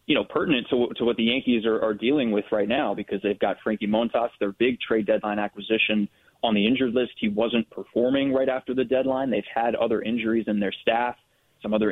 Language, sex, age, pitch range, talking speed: English, male, 20-39, 105-115 Hz, 220 wpm